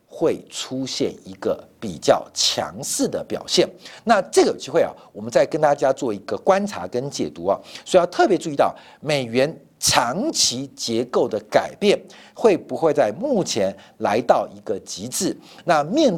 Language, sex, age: Chinese, male, 50-69